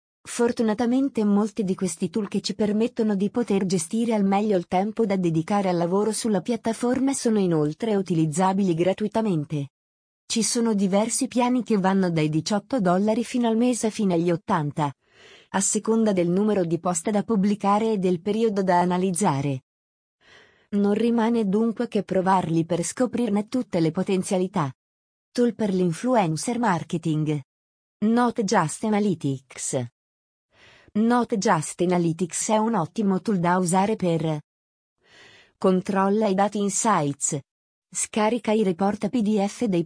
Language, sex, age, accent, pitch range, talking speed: Italian, female, 30-49, native, 175-220 Hz, 130 wpm